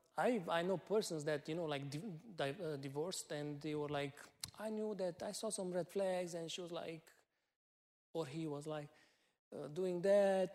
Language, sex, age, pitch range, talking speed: English, male, 30-49, 145-185 Hz, 200 wpm